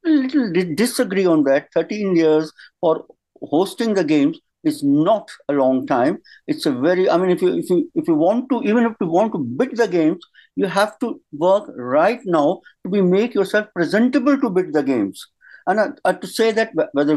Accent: Indian